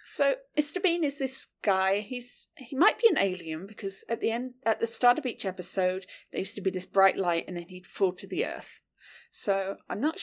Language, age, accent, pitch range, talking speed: English, 40-59, British, 185-270 Hz, 230 wpm